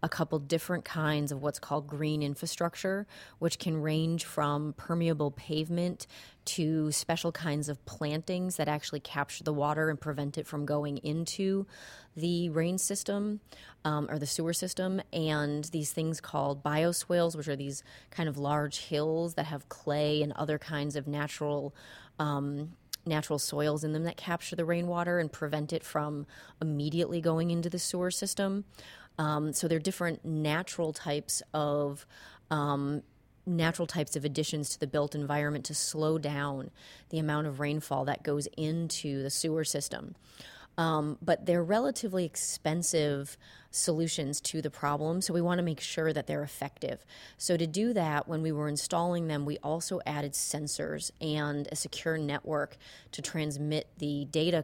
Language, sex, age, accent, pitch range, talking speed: English, female, 30-49, American, 145-165 Hz, 160 wpm